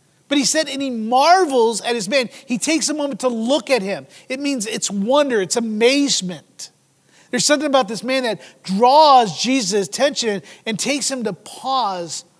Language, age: English, 30-49